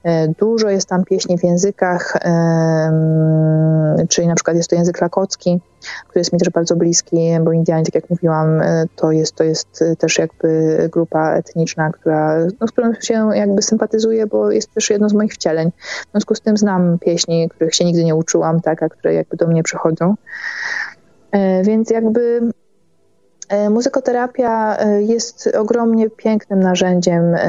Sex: female